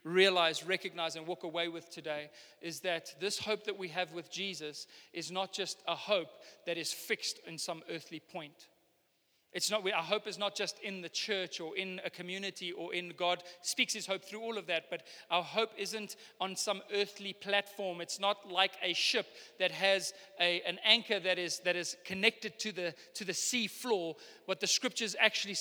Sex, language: male, English